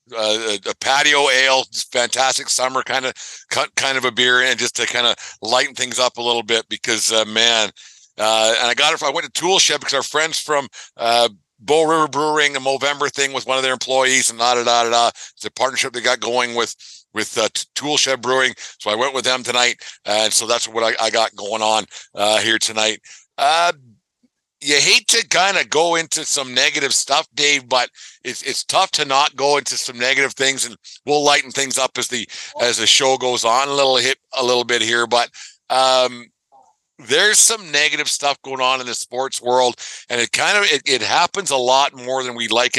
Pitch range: 120-140 Hz